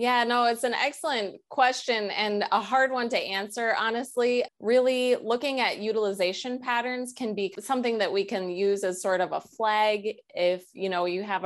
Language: English